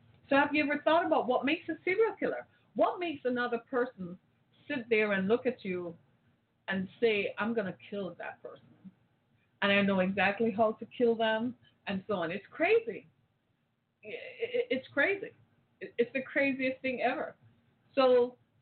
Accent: American